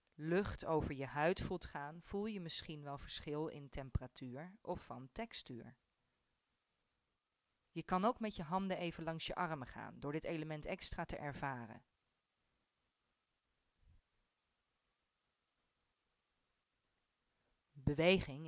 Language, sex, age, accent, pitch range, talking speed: Dutch, female, 40-59, Dutch, 140-180 Hz, 110 wpm